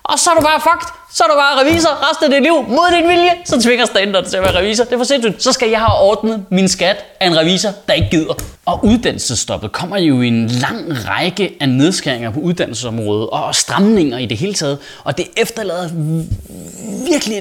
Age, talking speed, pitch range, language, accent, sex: 20-39, 220 wpm, 165-260 Hz, Danish, native, male